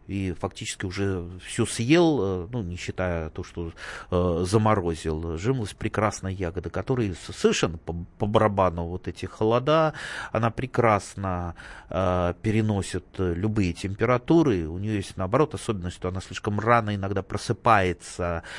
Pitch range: 95-125 Hz